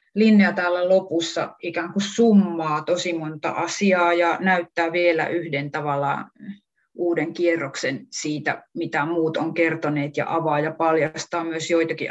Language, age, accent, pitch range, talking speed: Finnish, 30-49, native, 160-180 Hz, 135 wpm